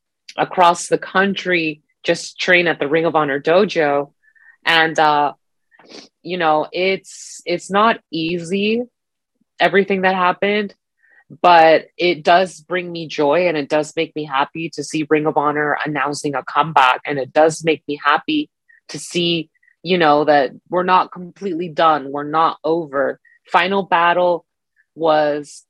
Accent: American